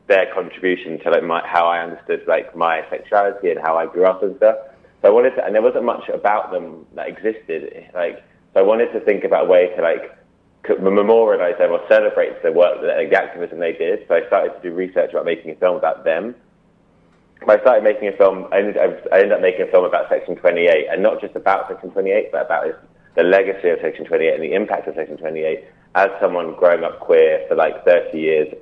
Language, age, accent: English, 20-39, British